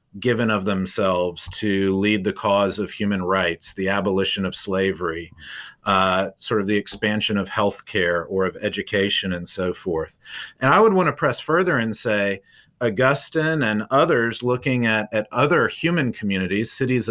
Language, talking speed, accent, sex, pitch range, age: English, 165 wpm, American, male, 100-135 Hz, 40-59